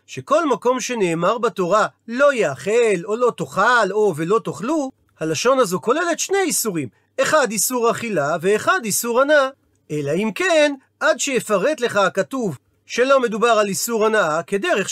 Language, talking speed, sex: Hebrew, 145 wpm, male